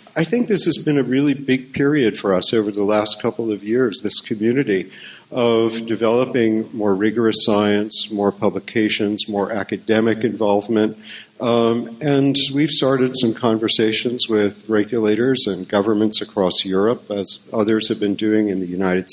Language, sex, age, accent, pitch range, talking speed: English, male, 50-69, American, 110-135 Hz, 155 wpm